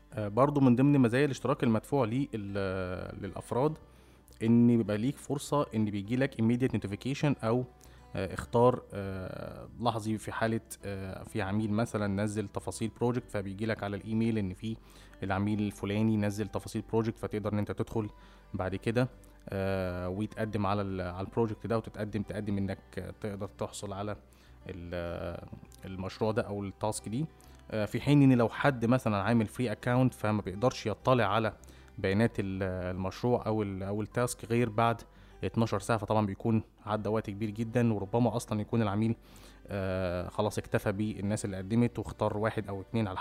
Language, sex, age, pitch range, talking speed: Arabic, male, 20-39, 100-120 Hz, 150 wpm